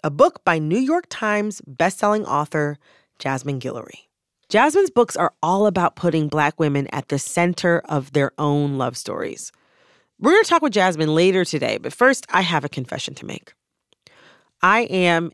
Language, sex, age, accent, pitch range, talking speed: English, female, 30-49, American, 140-205 Hz, 170 wpm